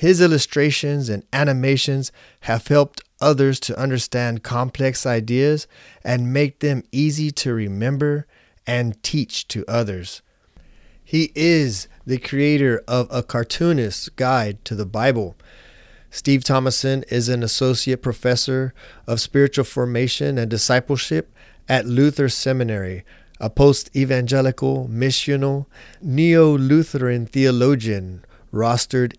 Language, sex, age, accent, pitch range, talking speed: English, male, 30-49, American, 115-140 Hz, 105 wpm